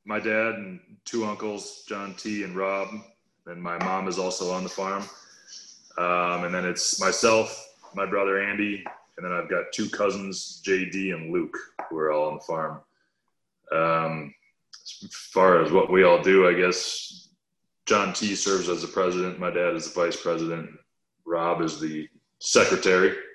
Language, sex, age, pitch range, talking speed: English, male, 20-39, 85-100 Hz, 170 wpm